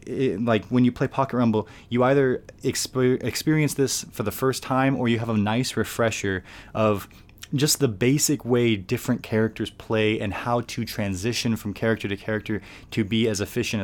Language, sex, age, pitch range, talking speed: English, male, 20-39, 100-115 Hz, 180 wpm